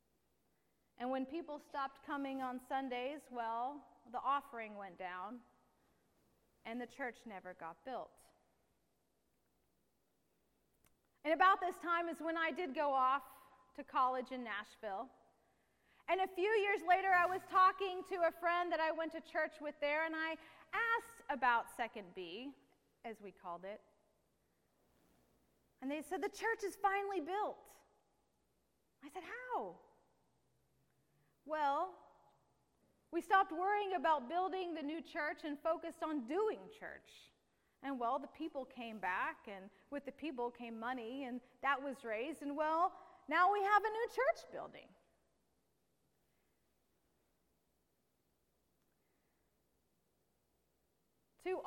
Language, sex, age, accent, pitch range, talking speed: English, female, 30-49, American, 255-340 Hz, 130 wpm